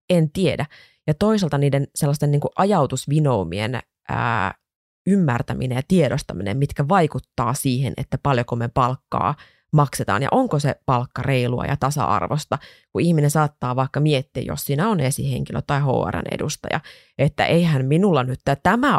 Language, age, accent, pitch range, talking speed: Finnish, 20-39, native, 130-150 Hz, 135 wpm